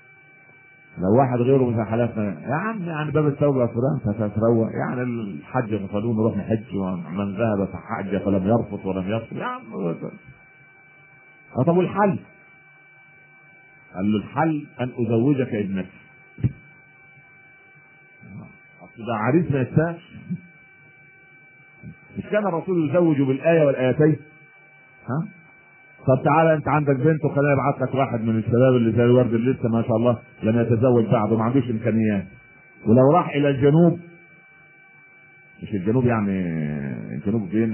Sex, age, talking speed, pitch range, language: male, 50-69, 120 wpm, 115-155 Hz, Arabic